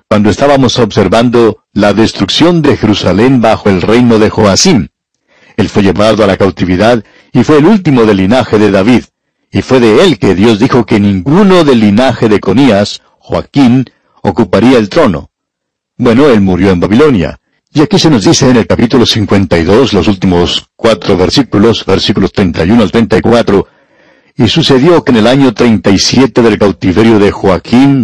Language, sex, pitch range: Spanish, male, 100-125 Hz